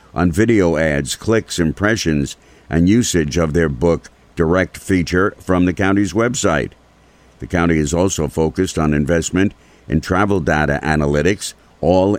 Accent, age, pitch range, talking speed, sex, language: American, 50-69, 85-100 Hz, 140 wpm, male, English